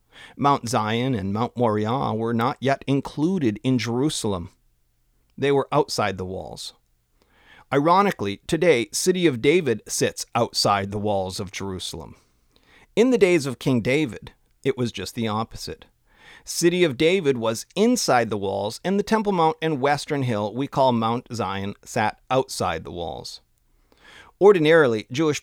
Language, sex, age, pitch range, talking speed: English, male, 40-59, 95-155 Hz, 145 wpm